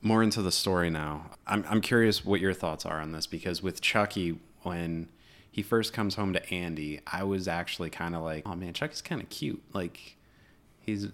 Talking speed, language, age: 205 wpm, English, 20-39